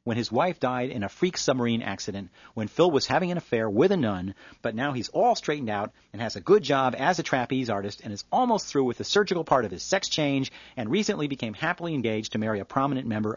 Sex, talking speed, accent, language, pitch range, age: male, 245 wpm, American, English, 110-155 Hz, 40-59